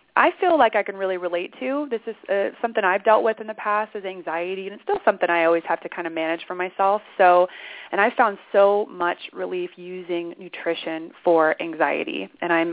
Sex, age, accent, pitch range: female, 20-39, American, 170-215 Hz